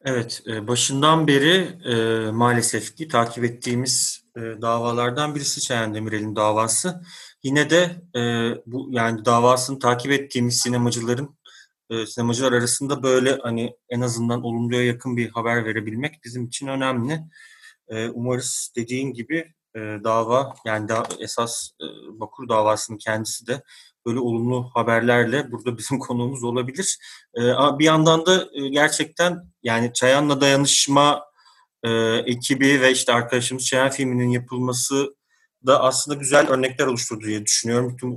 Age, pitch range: 30-49, 120-140 Hz